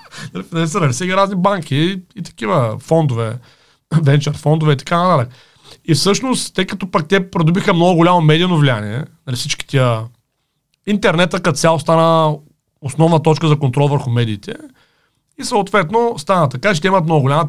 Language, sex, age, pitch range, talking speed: Bulgarian, male, 40-59, 140-175 Hz, 155 wpm